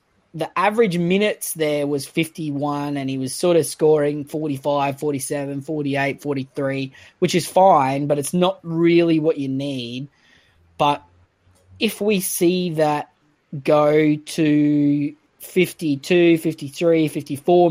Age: 20-39